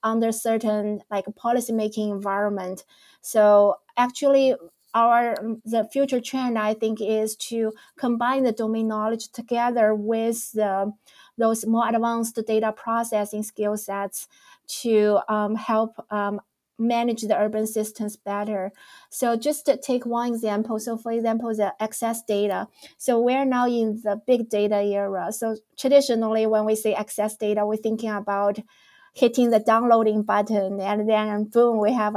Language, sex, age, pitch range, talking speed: English, female, 20-39, 205-230 Hz, 145 wpm